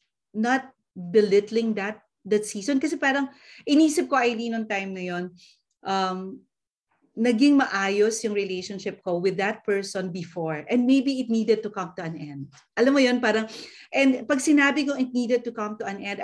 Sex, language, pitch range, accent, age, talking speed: female, Filipino, 185-250 Hz, native, 40-59, 175 wpm